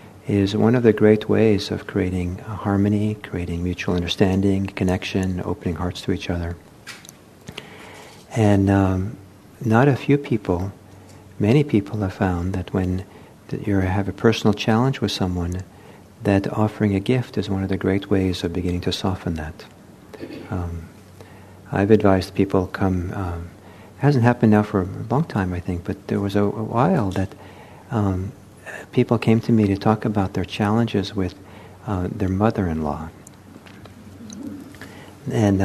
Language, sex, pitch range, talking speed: English, male, 90-105 Hz, 150 wpm